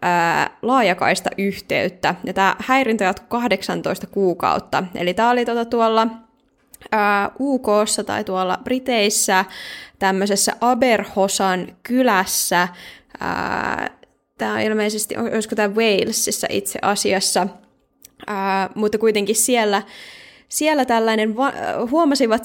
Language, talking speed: Finnish, 95 wpm